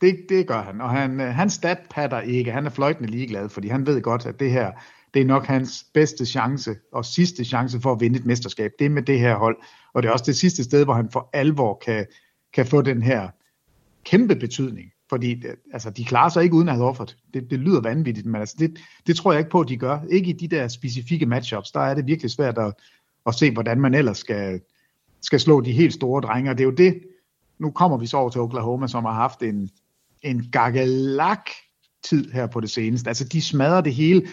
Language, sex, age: Danish, male, 50-69